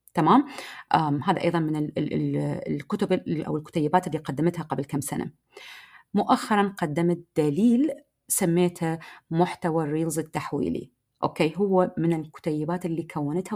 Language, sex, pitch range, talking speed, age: Arabic, female, 165-215 Hz, 110 wpm, 30-49